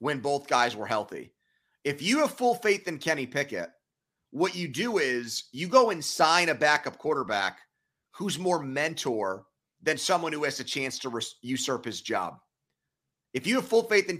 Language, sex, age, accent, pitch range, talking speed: English, male, 30-49, American, 130-165 Hz, 180 wpm